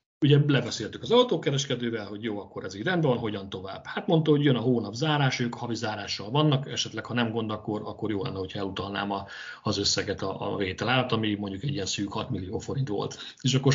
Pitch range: 105-135 Hz